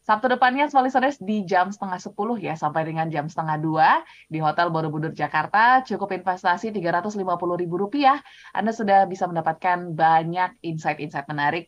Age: 20-39